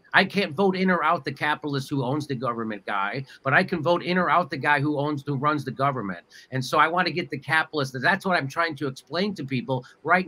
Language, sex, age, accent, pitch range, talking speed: English, male, 50-69, American, 135-175 Hz, 265 wpm